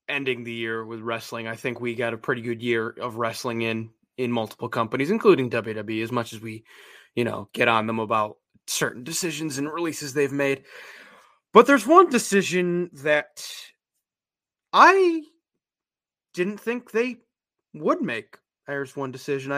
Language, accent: English, American